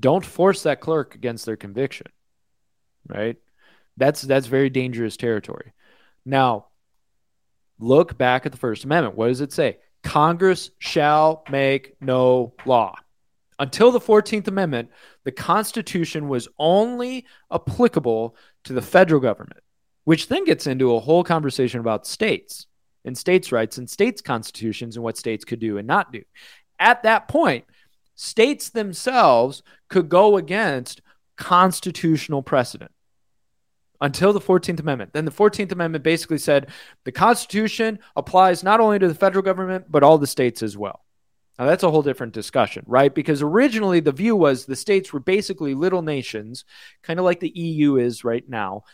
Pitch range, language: 125-185 Hz, English